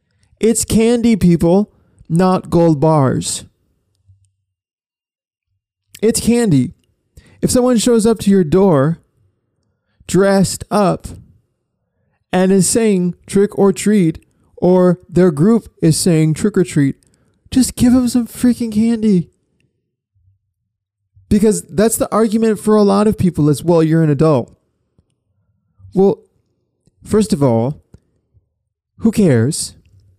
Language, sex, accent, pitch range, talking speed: English, male, American, 130-205 Hz, 115 wpm